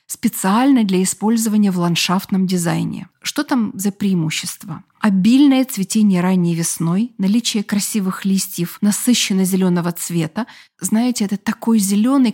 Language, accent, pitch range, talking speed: Russian, native, 185-220 Hz, 115 wpm